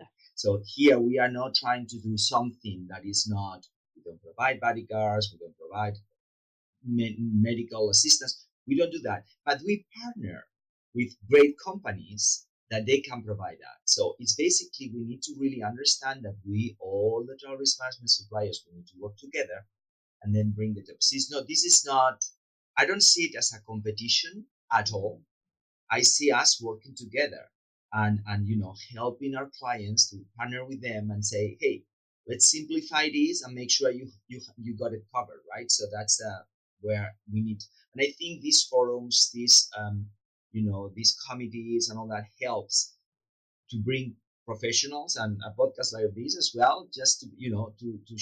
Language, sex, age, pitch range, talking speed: English, male, 30-49, 105-130 Hz, 180 wpm